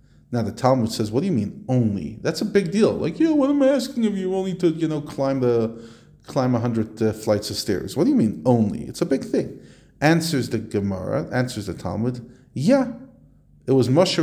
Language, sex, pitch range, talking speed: English, male, 120-175 Hz, 230 wpm